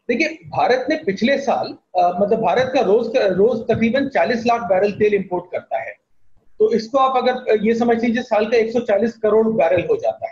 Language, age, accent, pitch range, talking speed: Hindi, 30-49, native, 210-270 Hz, 180 wpm